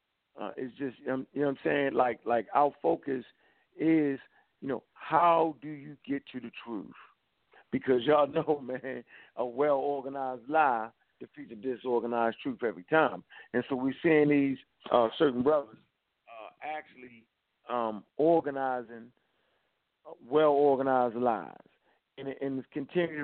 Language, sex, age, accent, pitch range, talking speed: English, male, 50-69, American, 120-145 Hz, 140 wpm